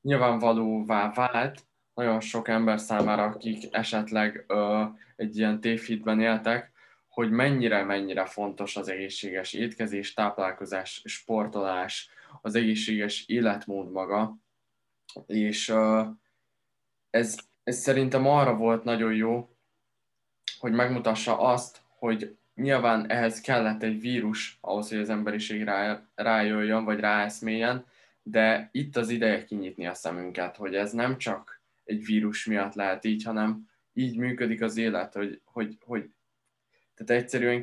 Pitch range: 100-115 Hz